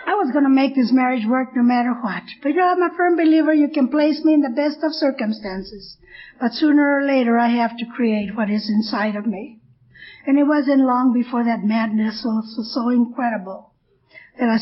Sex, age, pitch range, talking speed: female, 50-69, 225-265 Hz, 220 wpm